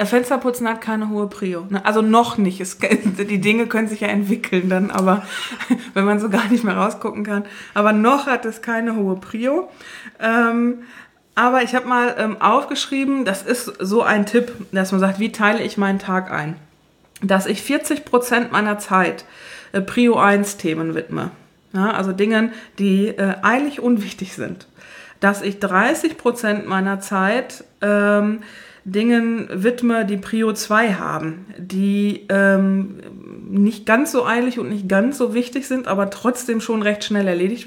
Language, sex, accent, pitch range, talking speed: German, female, German, 195-240 Hz, 160 wpm